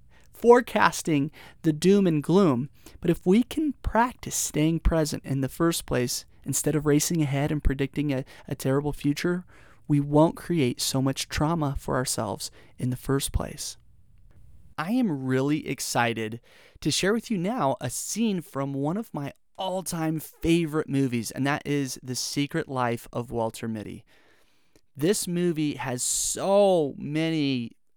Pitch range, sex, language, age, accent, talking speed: 130-175 Hz, male, English, 30-49, American, 150 wpm